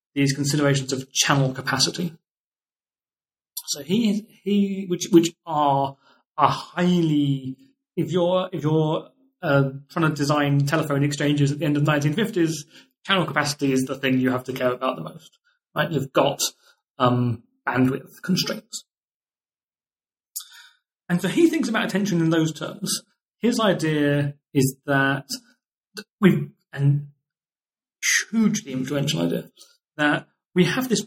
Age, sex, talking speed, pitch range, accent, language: 30-49, male, 135 wpm, 140-190 Hz, British, English